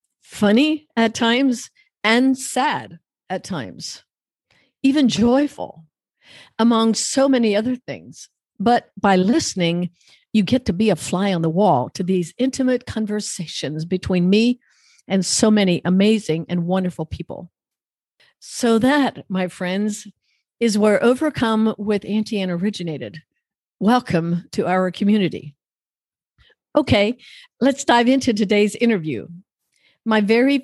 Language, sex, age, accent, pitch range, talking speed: English, female, 50-69, American, 185-235 Hz, 120 wpm